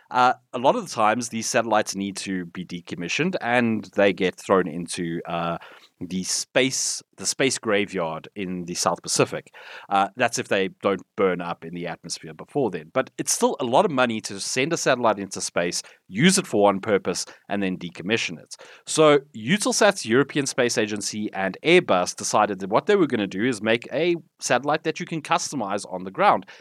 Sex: male